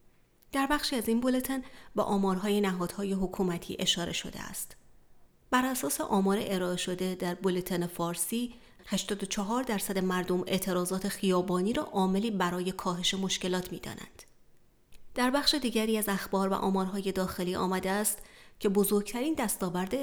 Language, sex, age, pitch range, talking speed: Persian, female, 30-49, 185-230 Hz, 130 wpm